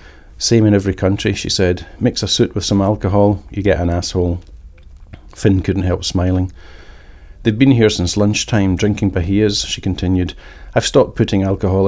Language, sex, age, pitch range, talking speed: English, male, 40-59, 85-105 Hz, 170 wpm